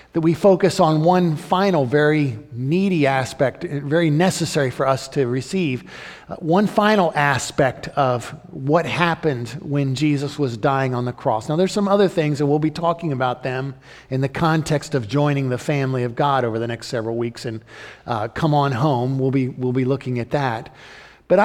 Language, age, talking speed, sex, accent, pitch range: English, 50-69, 185 wpm, male, American, 135-180 Hz